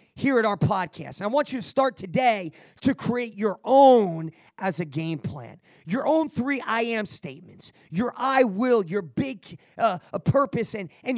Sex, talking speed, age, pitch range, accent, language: male, 180 wpm, 30-49, 175-240 Hz, American, English